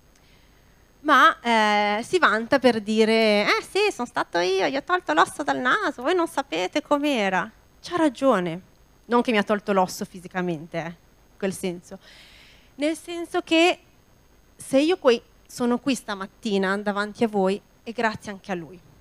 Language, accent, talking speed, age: Italian, native, 160 wpm, 30-49